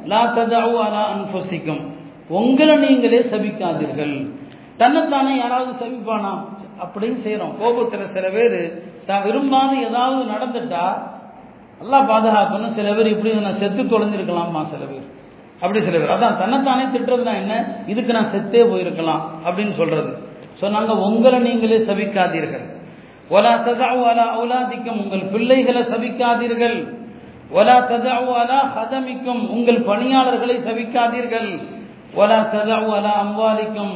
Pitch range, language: 200-245 Hz, Tamil